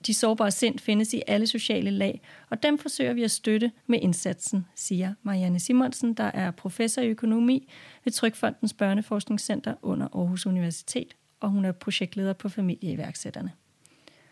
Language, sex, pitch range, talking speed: Danish, female, 195-230 Hz, 145 wpm